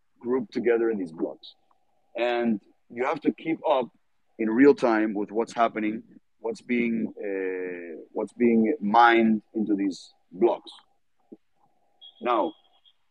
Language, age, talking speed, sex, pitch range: Spanish, 30-49, 125 wpm, male, 110-130 Hz